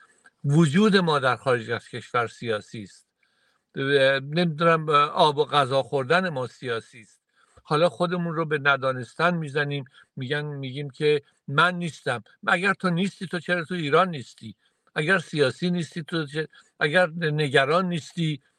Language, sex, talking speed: Persian, male, 140 wpm